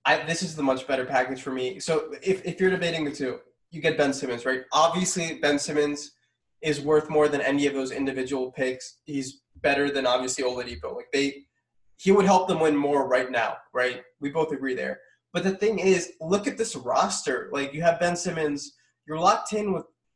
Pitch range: 140-180 Hz